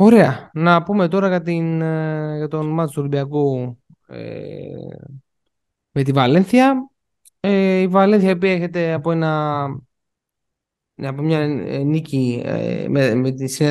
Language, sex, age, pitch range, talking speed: Greek, male, 20-39, 140-190 Hz, 125 wpm